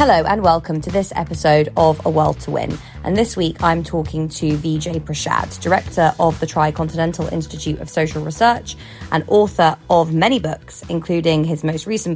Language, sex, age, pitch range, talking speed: English, female, 20-39, 155-180 Hz, 180 wpm